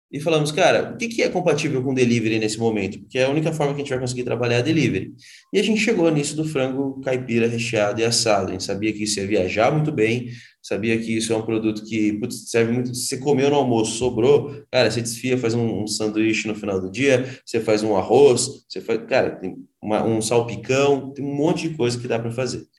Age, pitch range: 20-39, 115-140 Hz